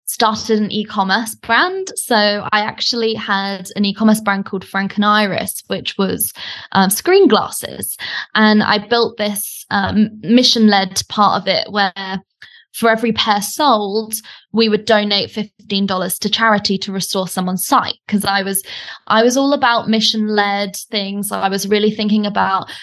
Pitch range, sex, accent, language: 195-225 Hz, female, British, English